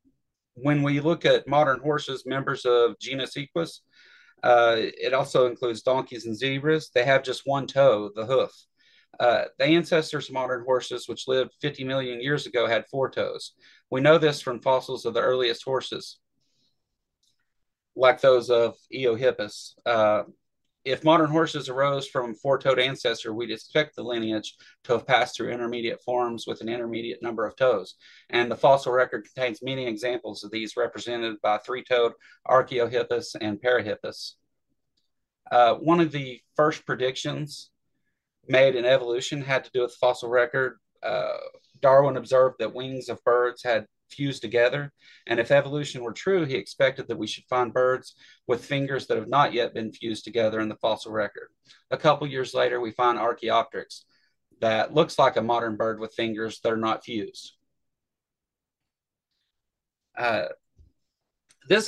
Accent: American